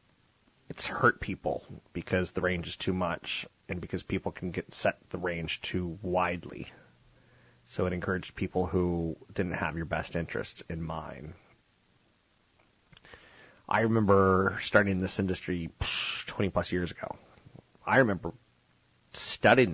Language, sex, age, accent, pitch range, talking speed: English, male, 30-49, American, 85-100 Hz, 130 wpm